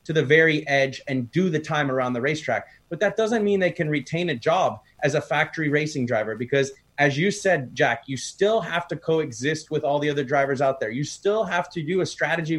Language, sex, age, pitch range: English, male, 30-49, 135-165 Hz